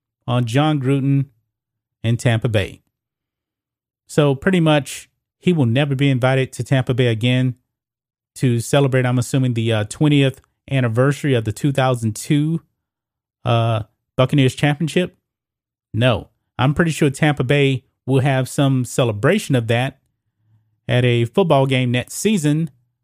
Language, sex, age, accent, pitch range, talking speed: English, male, 30-49, American, 115-145 Hz, 130 wpm